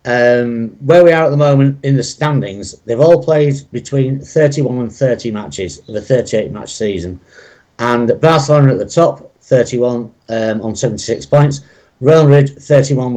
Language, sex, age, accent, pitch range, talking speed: English, male, 60-79, British, 115-140 Hz, 165 wpm